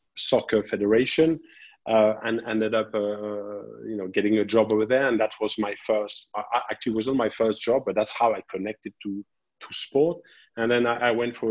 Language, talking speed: English, 215 wpm